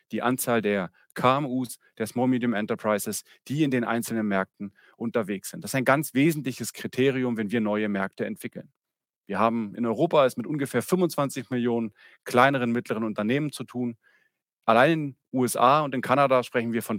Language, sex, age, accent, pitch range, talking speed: German, male, 40-59, German, 115-135 Hz, 170 wpm